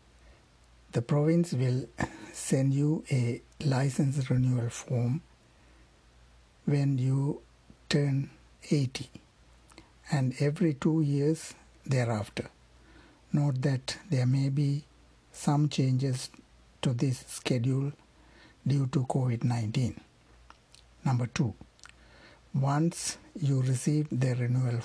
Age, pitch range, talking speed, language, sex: 60-79, 115-145 Hz, 90 wpm, Tamil, male